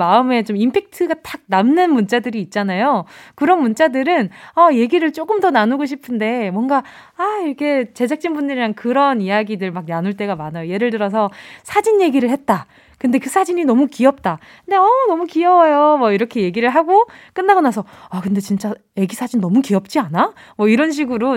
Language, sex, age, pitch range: Korean, female, 20-39, 205-310 Hz